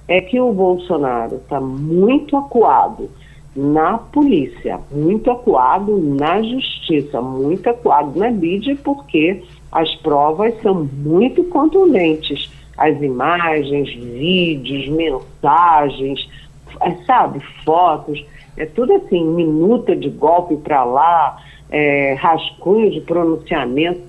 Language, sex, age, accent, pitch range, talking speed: Portuguese, female, 50-69, Brazilian, 145-205 Hz, 105 wpm